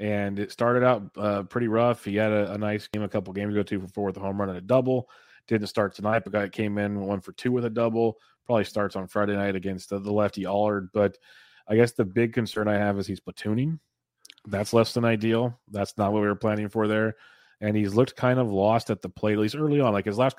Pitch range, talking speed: 100-110 Hz, 260 wpm